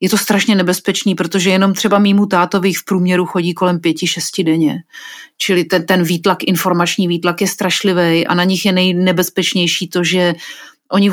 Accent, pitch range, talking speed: native, 170-195 Hz, 175 wpm